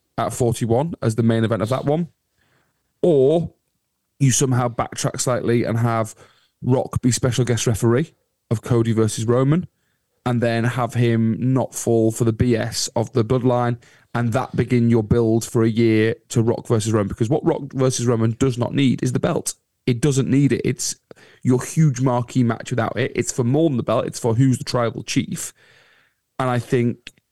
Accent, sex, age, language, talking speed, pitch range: British, male, 30-49, English, 190 wpm, 115-135 Hz